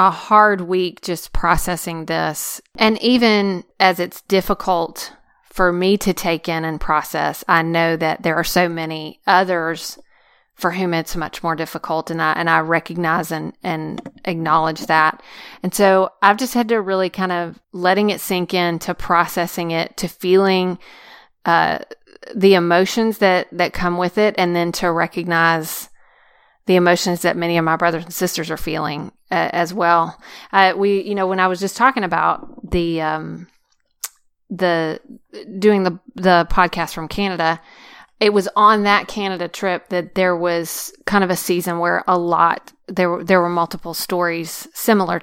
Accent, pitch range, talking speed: American, 165-190 Hz, 165 wpm